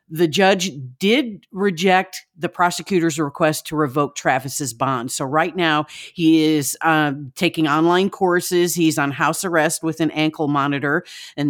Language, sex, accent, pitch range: English, female, American, 145-180 Hz